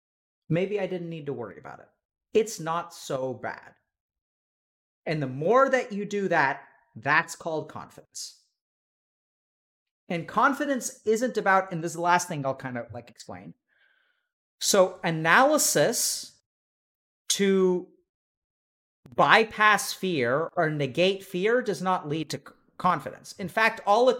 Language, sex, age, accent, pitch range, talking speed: English, male, 30-49, American, 145-210 Hz, 135 wpm